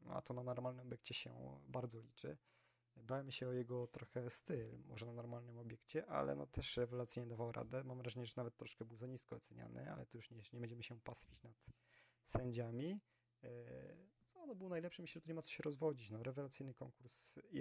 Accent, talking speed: native, 210 wpm